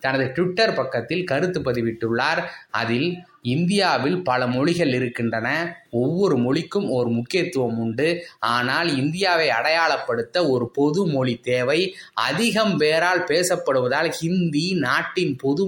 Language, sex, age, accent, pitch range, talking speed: Tamil, male, 20-39, native, 125-175 Hz, 105 wpm